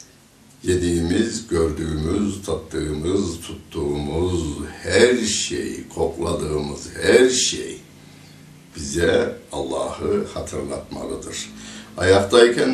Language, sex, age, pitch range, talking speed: Turkish, male, 60-79, 80-110 Hz, 60 wpm